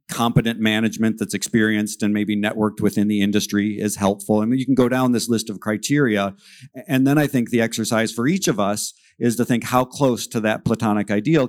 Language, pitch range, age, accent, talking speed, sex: English, 105-120 Hz, 50-69, American, 220 wpm, male